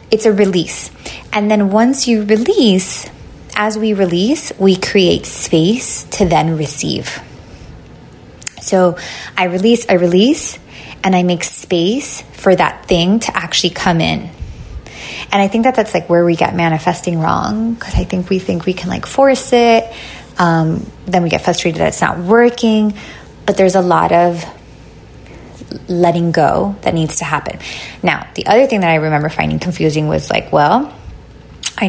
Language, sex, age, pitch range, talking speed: English, female, 20-39, 175-230 Hz, 165 wpm